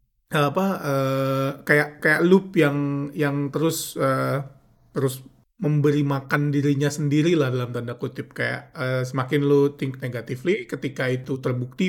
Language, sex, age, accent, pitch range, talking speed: Indonesian, male, 30-49, native, 130-155 Hz, 140 wpm